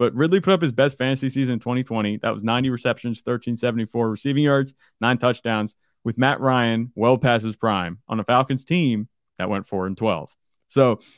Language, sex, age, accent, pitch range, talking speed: English, male, 30-49, American, 110-130 Hz, 195 wpm